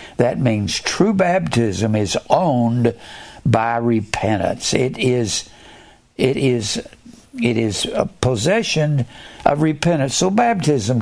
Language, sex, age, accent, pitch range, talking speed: English, male, 60-79, American, 115-145 Hz, 110 wpm